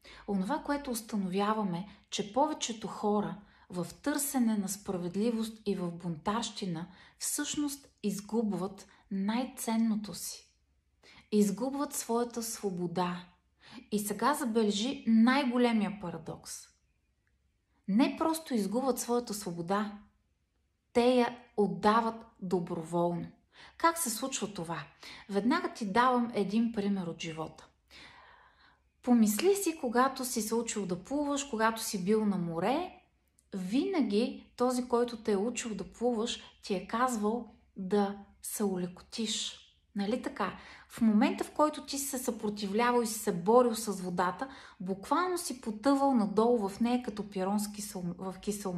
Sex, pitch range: female, 200-250 Hz